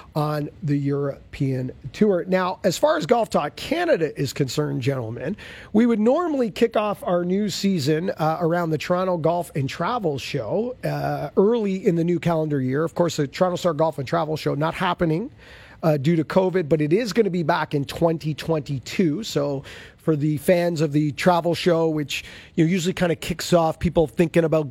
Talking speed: 195 wpm